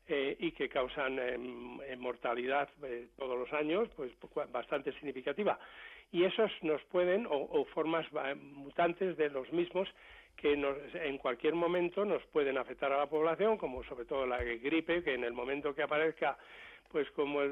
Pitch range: 140-170 Hz